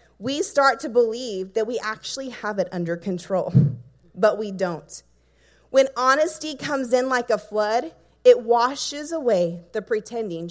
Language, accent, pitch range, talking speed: English, American, 180-245 Hz, 150 wpm